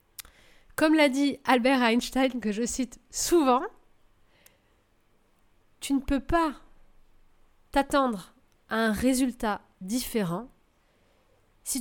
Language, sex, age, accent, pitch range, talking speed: French, female, 30-49, French, 200-275 Hz, 95 wpm